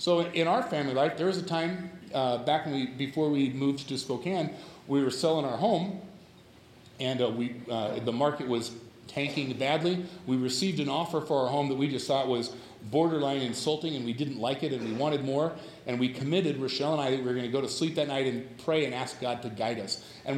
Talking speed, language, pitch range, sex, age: 235 wpm, English, 130-170 Hz, male, 40-59